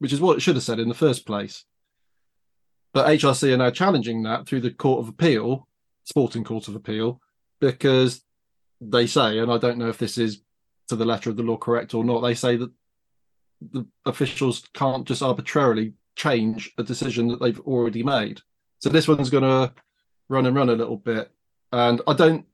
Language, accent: English, British